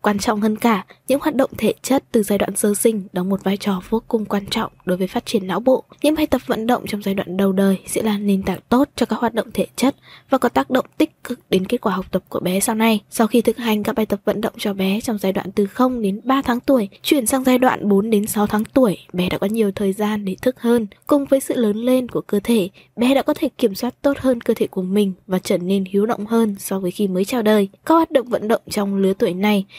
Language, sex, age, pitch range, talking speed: Vietnamese, female, 20-39, 195-255 Hz, 290 wpm